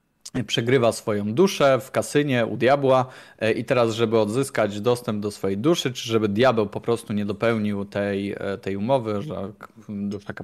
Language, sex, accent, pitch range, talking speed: Polish, male, native, 105-130 Hz, 155 wpm